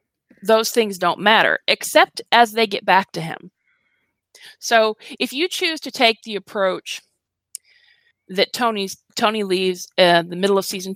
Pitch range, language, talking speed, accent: 185-245 Hz, English, 155 wpm, American